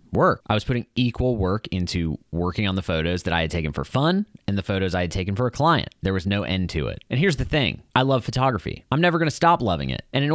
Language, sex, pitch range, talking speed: English, male, 90-125 Hz, 275 wpm